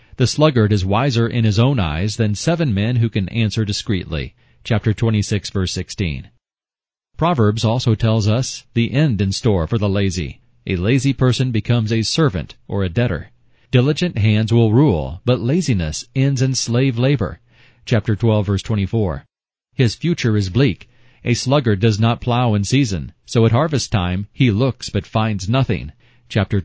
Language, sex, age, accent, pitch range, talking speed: English, male, 40-59, American, 105-125 Hz, 165 wpm